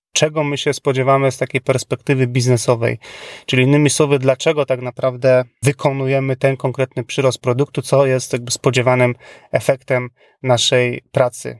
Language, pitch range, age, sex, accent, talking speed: Polish, 125-145 Hz, 30-49, male, native, 135 wpm